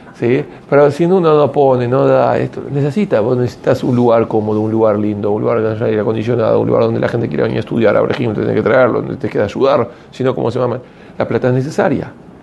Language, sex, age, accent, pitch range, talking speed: Spanish, male, 40-59, Argentinian, 110-140 Hz, 240 wpm